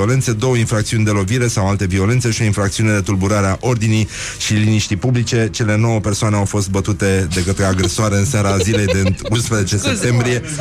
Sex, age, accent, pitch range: male, 30-49, native, 95-120 Hz